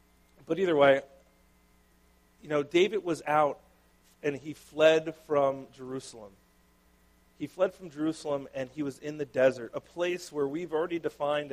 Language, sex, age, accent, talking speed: English, male, 40-59, American, 150 wpm